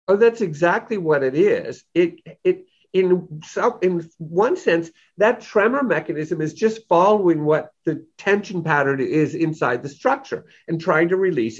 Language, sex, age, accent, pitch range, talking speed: English, male, 50-69, American, 155-250 Hz, 160 wpm